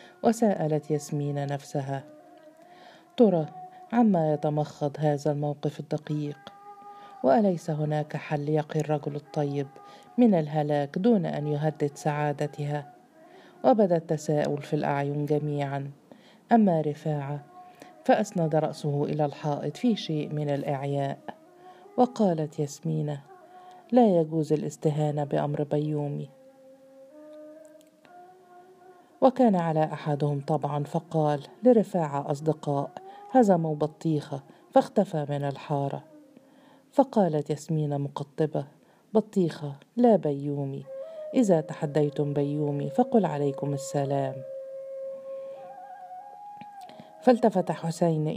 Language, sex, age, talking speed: Arabic, female, 40-59, 85 wpm